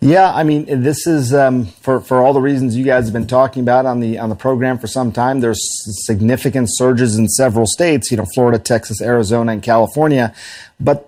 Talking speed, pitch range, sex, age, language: 210 wpm, 115-135 Hz, male, 40-59, English